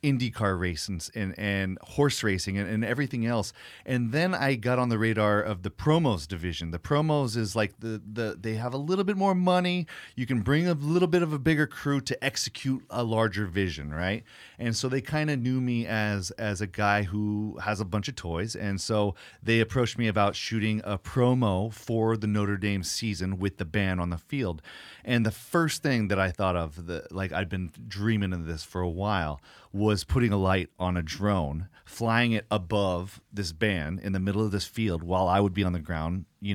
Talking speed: 215 wpm